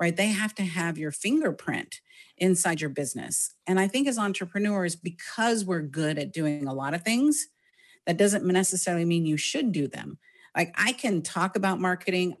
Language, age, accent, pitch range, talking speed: English, 40-59, American, 165-205 Hz, 185 wpm